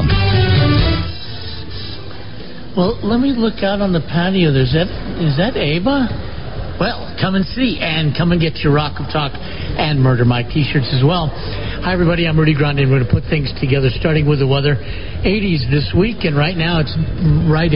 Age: 60-79